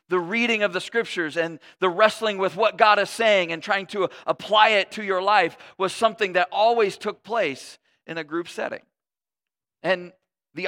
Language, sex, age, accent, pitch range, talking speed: English, male, 40-59, American, 150-195 Hz, 185 wpm